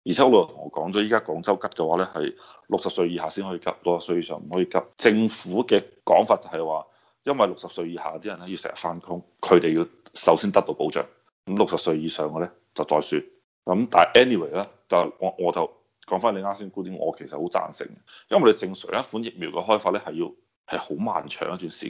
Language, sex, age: Chinese, male, 30-49